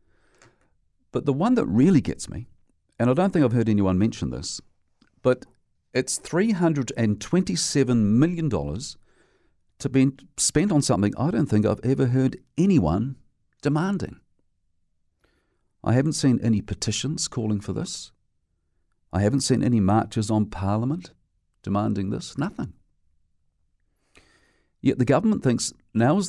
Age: 50-69